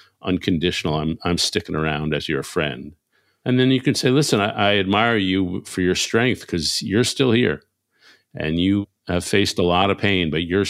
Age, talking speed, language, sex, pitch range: 50-69, 195 wpm, English, male, 85-115 Hz